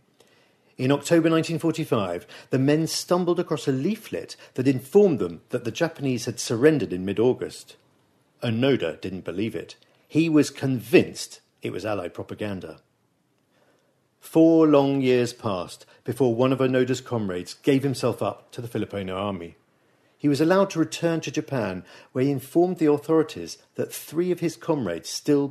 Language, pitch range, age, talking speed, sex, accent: English, 110-145 Hz, 50-69, 150 wpm, male, British